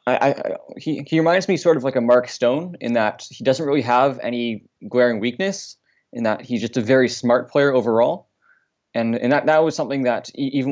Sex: male